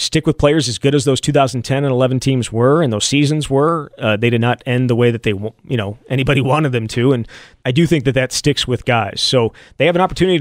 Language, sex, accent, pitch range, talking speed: English, male, American, 120-145 Hz, 260 wpm